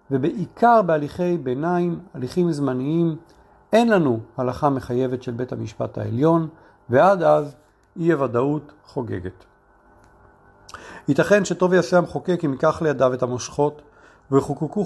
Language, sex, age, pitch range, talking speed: Hebrew, male, 40-59, 125-170 Hz, 115 wpm